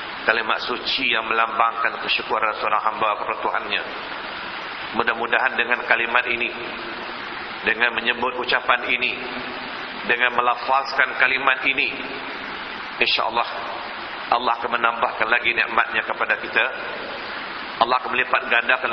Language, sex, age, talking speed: Malay, male, 40-59, 110 wpm